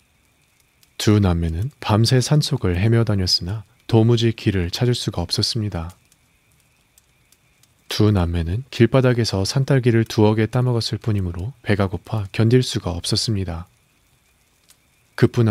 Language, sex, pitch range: Korean, male, 95-120 Hz